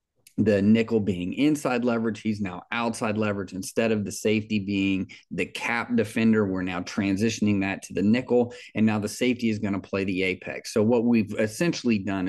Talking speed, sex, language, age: 190 wpm, male, English, 30-49